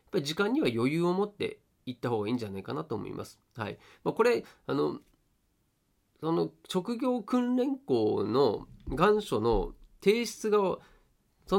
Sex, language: male, Japanese